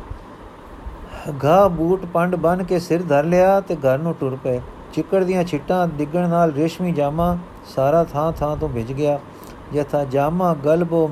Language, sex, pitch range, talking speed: Punjabi, male, 145-175 Hz, 155 wpm